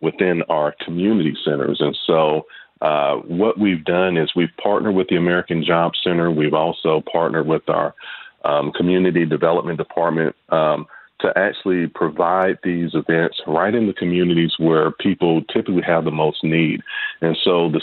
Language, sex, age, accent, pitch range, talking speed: English, male, 40-59, American, 80-105 Hz, 160 wpm